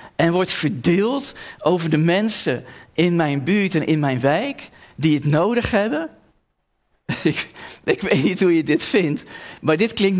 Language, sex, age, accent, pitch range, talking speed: Dutch, male, 40-59, Dutch, 135-185 Hz, 165 wpm